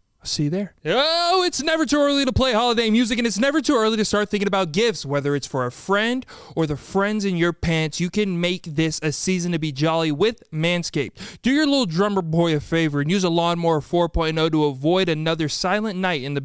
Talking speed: 230 wpm